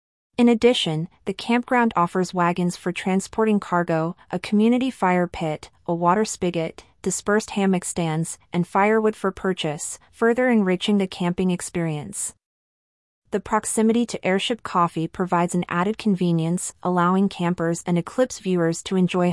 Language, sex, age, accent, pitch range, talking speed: English, female, 30-49, American, 170-205 Hz, 135 wpm